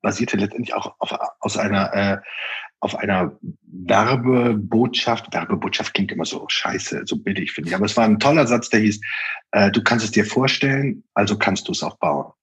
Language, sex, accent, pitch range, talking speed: German, male, German, 105-130 Hz, 190 wpm